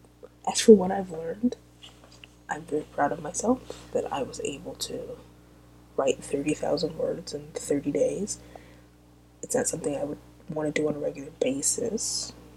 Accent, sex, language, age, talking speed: American, female, English, 20-39, 160 wpm